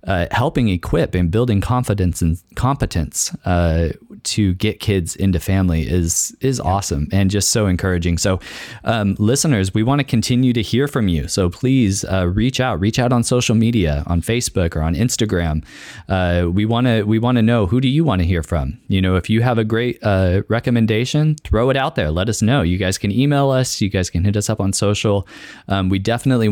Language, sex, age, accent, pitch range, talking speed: English, male, 20-39, American, 90-110 Hz, 215 wpm